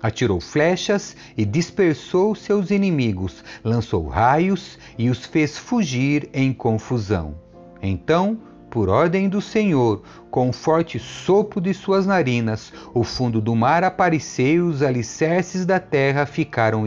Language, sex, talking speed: Portuguese, male, 135 wpm